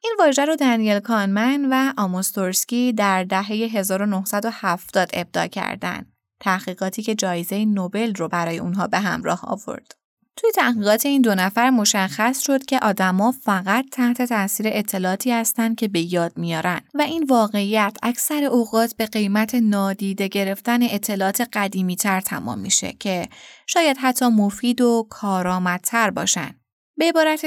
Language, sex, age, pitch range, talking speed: Persian, female, 20-39, 195-250 Hz, 130 wpm